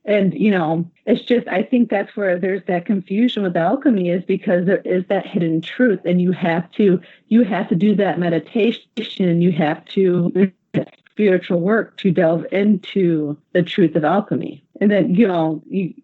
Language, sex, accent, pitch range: English, female, American, 175-215 Hz